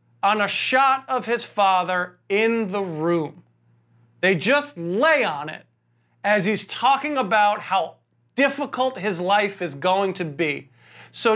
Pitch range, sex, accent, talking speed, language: 185-275 Hz, male, American, 145 wpm, English